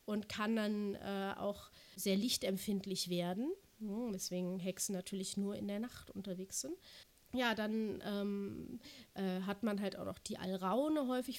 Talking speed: 160 wpm